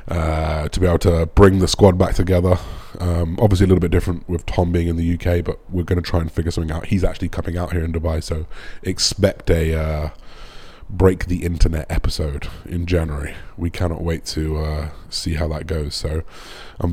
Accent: British